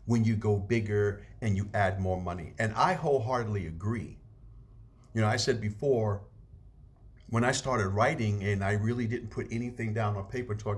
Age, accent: 50-69, American